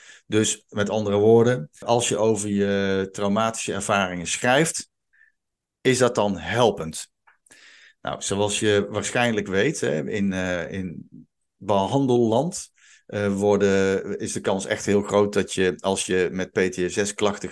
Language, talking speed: Dutch, 135 wpm